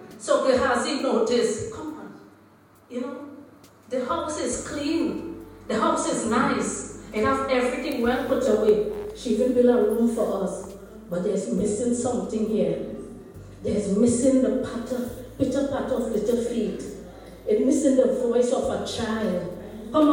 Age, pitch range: 40-59, 200-270 Hz